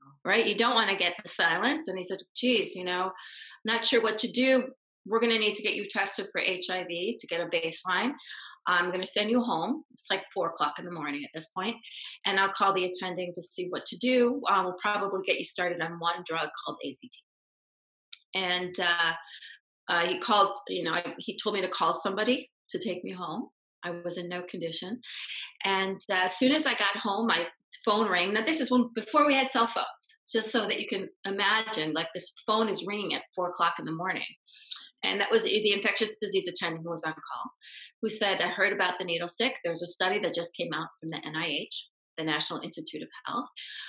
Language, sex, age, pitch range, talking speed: English, female, 30-49, 175-225 Hz, 225 wpm